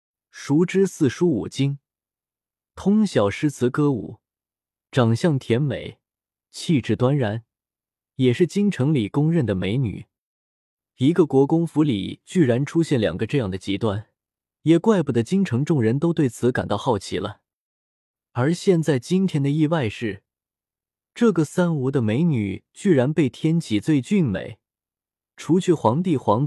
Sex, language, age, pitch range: male, Chinese, 20-39, 115-170 Hz